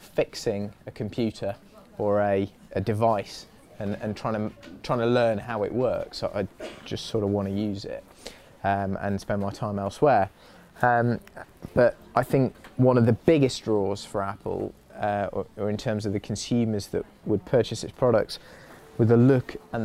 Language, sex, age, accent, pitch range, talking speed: English, male, 20-39, British, 105-115 Hz, 180 wpm